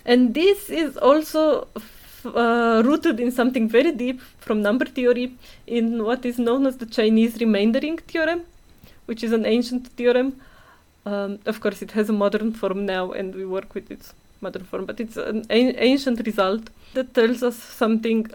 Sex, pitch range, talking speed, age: female, 200-240 Hz, 170 wpm, 20-39